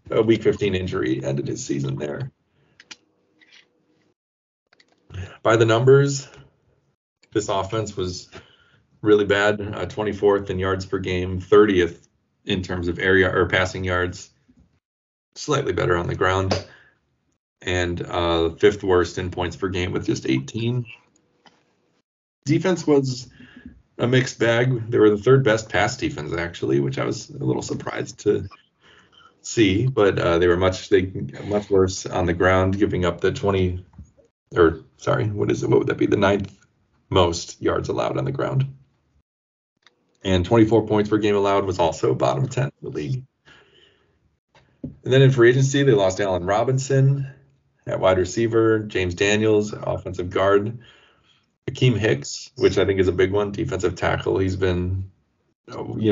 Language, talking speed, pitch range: English, 150 wpm, 90-115 Hz